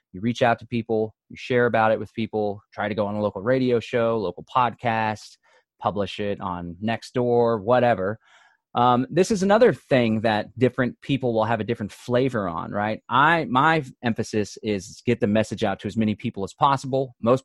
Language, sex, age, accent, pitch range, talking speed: English, male, 30-49, American, 105-120 Hz, 195 wpm